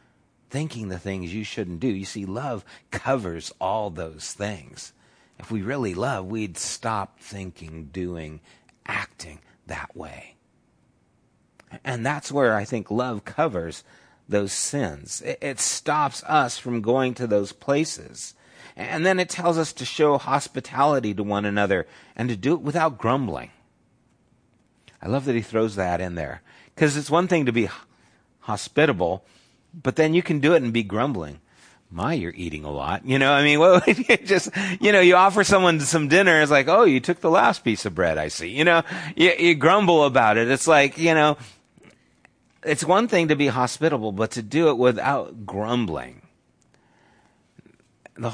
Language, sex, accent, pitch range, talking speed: English, male, American, 100-150 Hz, 170 wpm